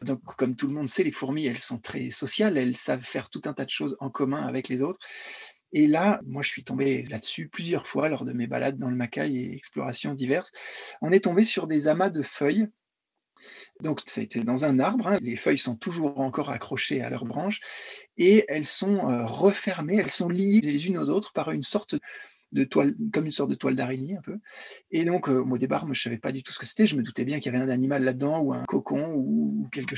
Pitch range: 135-210 Hz